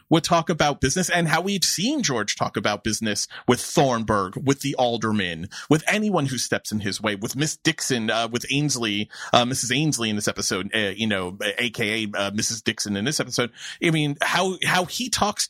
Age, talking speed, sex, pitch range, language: 30-49, 205 wpm, male, 120-170 Hz, English